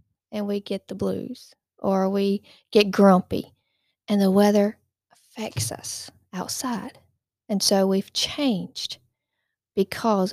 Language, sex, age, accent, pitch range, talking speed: English, female, 40-59, American, 185-235 Hz, 115 wpm